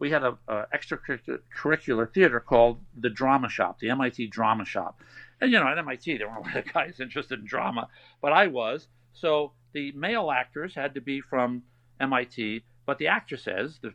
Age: 50-69